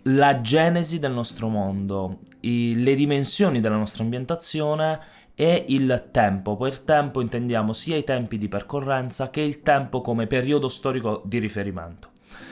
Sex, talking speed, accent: male, 145 wpm, native